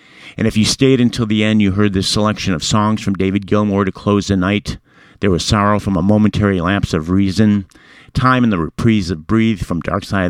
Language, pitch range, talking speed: English, 95-115 Hz, 220 wpm